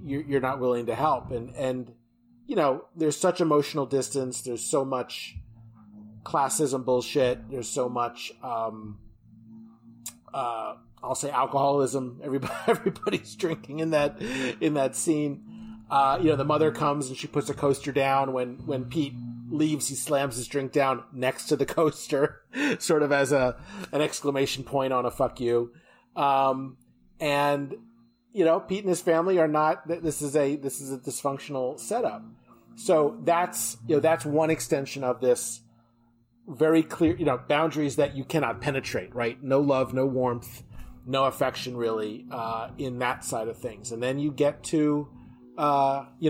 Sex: male